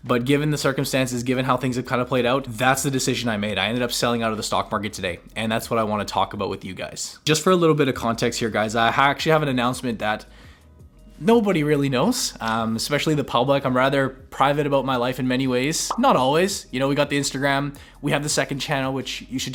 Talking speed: 260 wpm